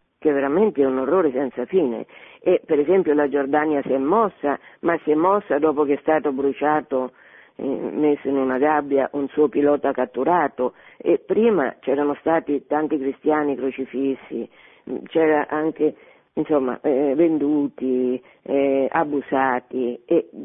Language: Italian